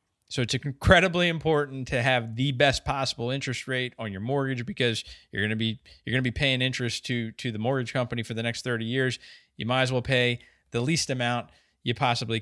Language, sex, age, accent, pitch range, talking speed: English, male, 20-39, American, 105-125 Hz, 220 wpm